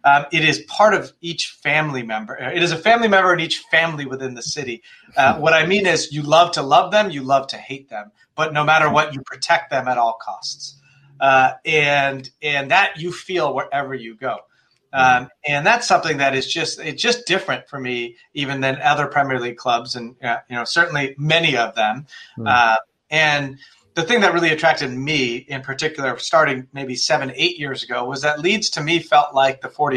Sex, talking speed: male, 205 wpm